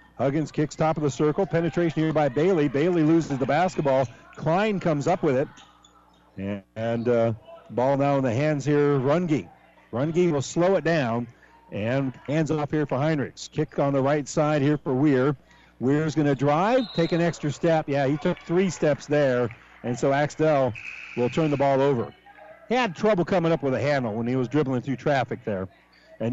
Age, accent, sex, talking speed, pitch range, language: 50-69, American, male, 195 wpm, 135-170 Hz, English